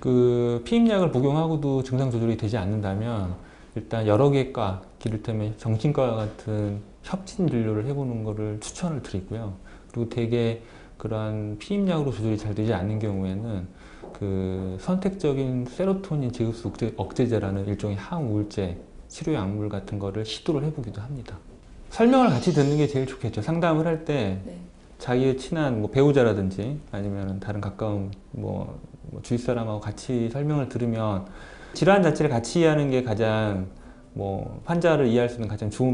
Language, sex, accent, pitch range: Korean, male, native, 105-135 Hz